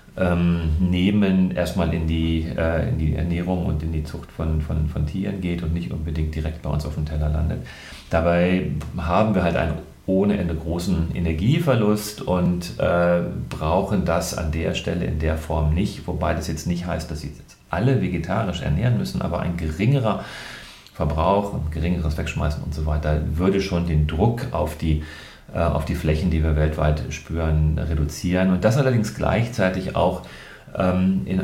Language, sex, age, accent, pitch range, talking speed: German, male, 40-59, German, 80-95 Hz, 165 wpm